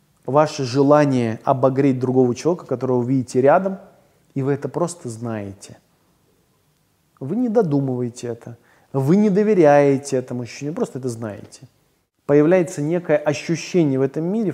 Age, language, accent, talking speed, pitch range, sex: 20-39, Russian, native, 135 wpm, 125-155 Hz, male